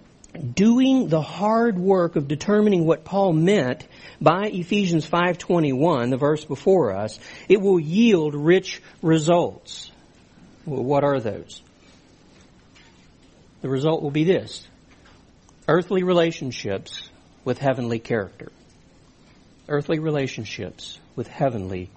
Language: English